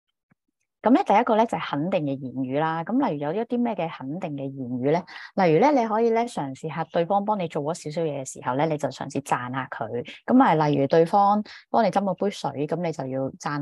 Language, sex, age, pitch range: Chinese, female, 20-39, 135-175 Hz